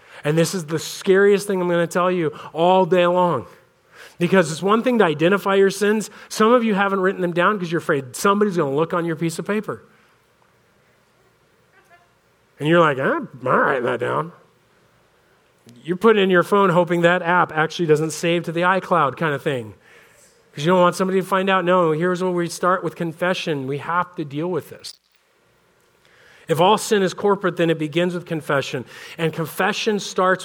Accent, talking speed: American, 200 wpm